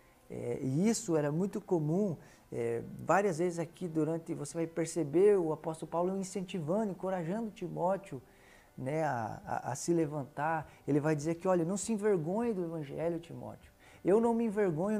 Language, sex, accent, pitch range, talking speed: Portuguese, male, Brazilian, 150-190 Hz, 165 wpm